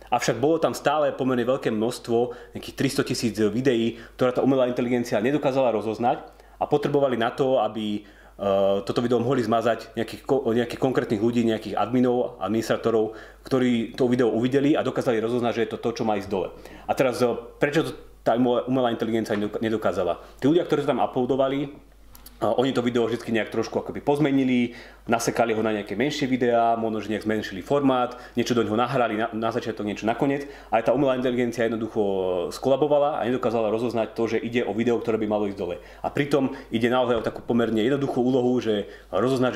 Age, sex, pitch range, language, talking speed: 30-49, male, 110-130 Hz, Slovak, 180 wpm